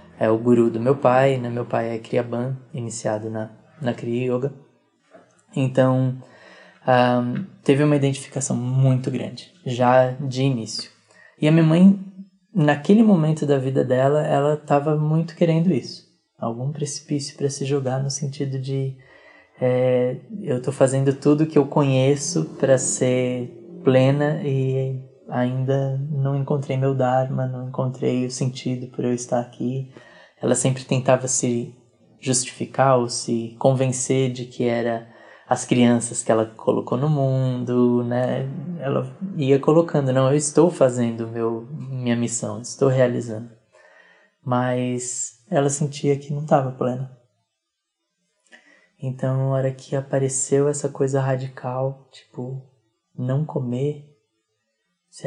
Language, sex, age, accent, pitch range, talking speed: Portuguese, male, 20-39, Brazilian, 125-145 Hz, 130 wpm